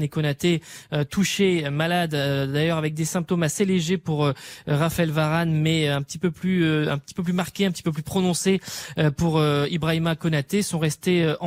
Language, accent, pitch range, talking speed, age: French, French, 145-175 Hz, 205 wpm, 20-39